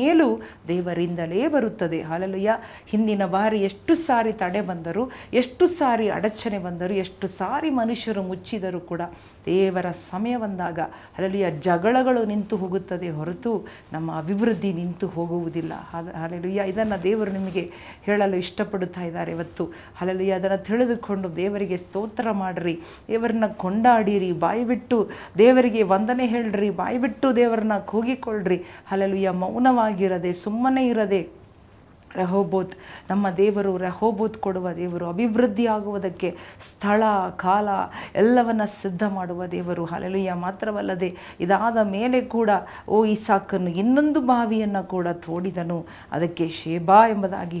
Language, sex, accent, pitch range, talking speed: Kannada, female, native, 180-220 Hz, 110 wpm